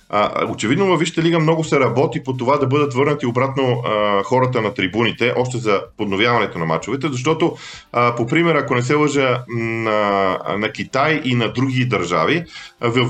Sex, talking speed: male, 165 wpm